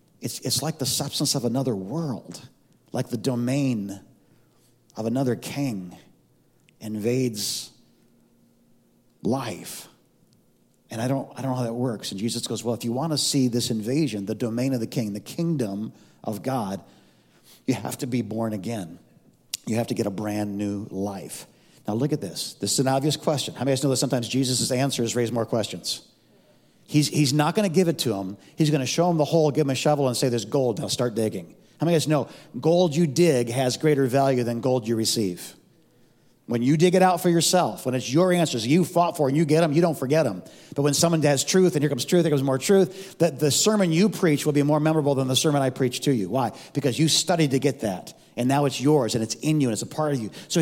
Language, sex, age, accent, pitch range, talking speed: English, male, 50-69, American, 120-155 Hz, 235 wpm